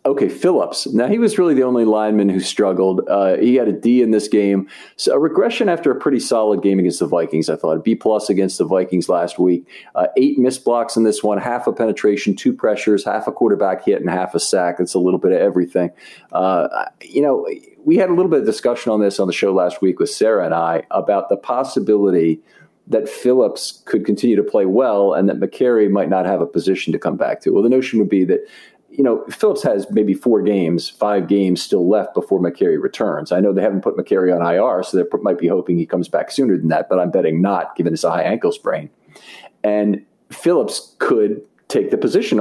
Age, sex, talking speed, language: 40-59, male, 230 wpm, English